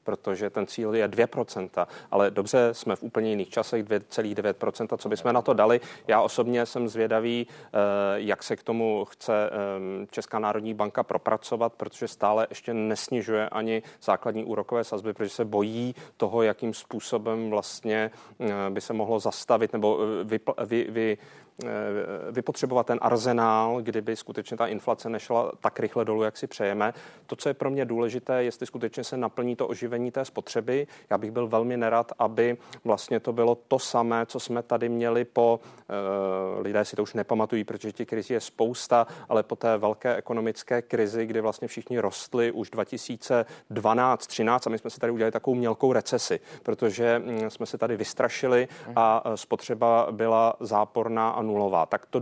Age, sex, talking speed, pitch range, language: 30-49, male, 165 wpm, 110-120 Hz, Czech